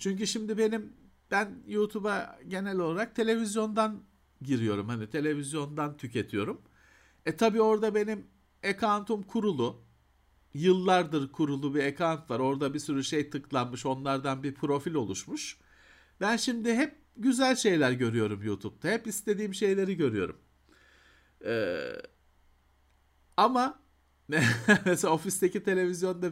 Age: 50-69